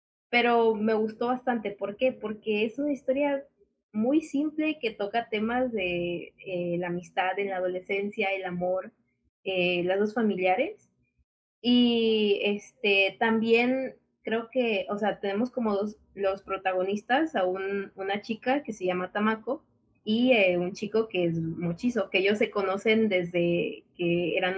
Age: 20-39